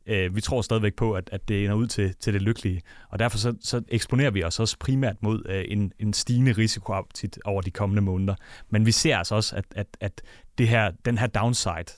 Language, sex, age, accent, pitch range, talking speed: Danish, male, 30-49, native, 100-115 Hz, 180 wpm